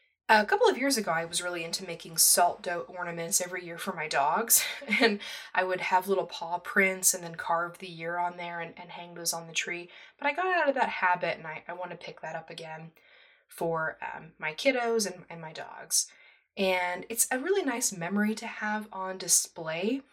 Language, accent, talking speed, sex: English, American, 220 wpm, female